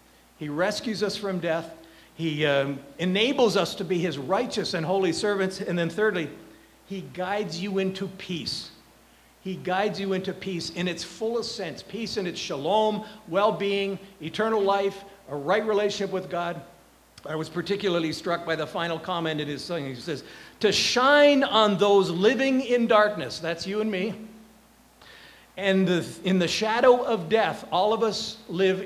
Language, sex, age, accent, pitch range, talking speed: English, male, 50-69, American, 165-210 Hz, 165 wpm